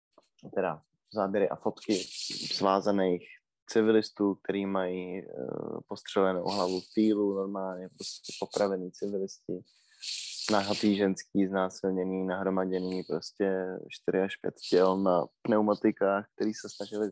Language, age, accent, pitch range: Czech, 20-39, native, 95-110 Hz